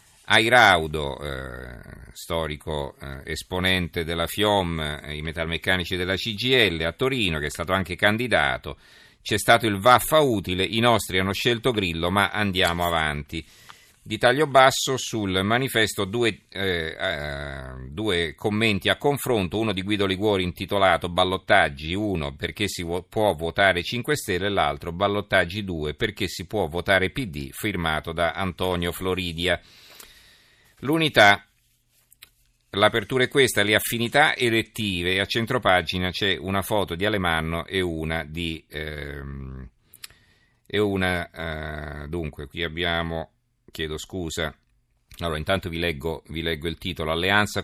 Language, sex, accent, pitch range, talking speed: Italian, male, native, 85-105 Hz, 135 wpm